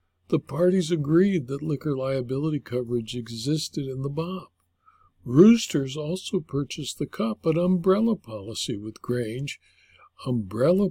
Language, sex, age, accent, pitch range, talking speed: English, male, 60-79, American, 120-165 Hz, 120 wpm